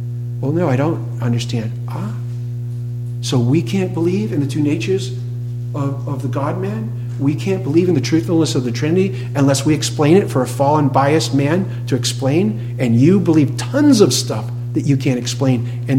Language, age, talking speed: English, 50-69, 185 wpm